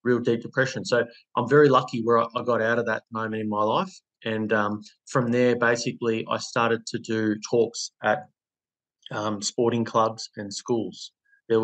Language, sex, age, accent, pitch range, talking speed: English, male, 20-39, Australian, 105-120 Hz, 175 wpm